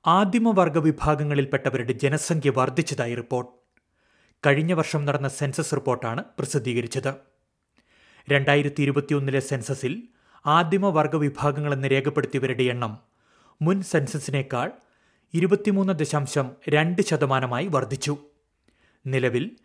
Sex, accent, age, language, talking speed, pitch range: male, native, 30-49, Malayalam, 80 wpm, 135-155 Hz